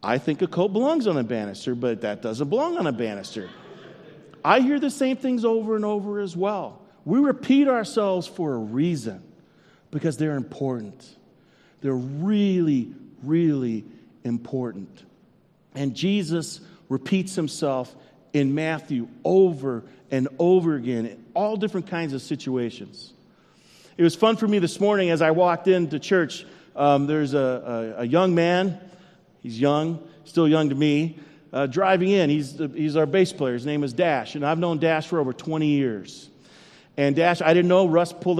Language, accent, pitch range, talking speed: English, American, 145-200 Hz, 165 wpm